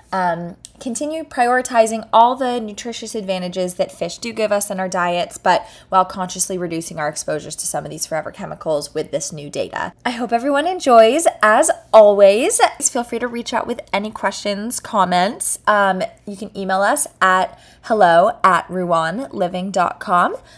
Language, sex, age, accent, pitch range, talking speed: English, female, 20-39, American, 185-230 Hz, 165 wpm